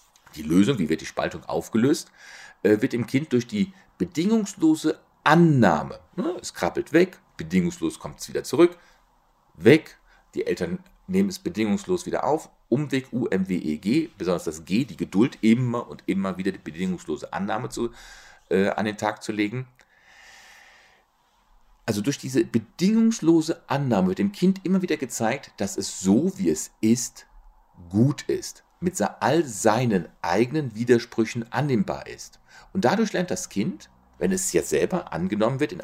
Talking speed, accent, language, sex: 150 wpm, German, German, male